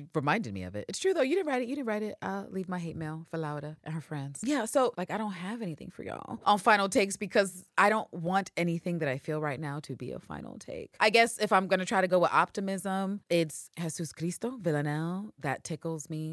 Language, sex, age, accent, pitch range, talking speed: English, female, 30-49, American, 135-215 Hz, 255 wpm